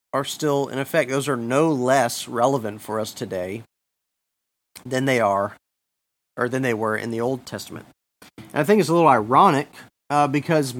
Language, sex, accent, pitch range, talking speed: English, male, American, 105-130 Hz, 170 wpm